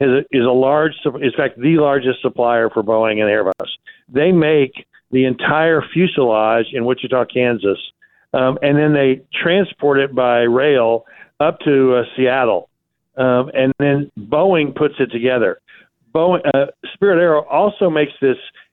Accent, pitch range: American, 125-150 Hz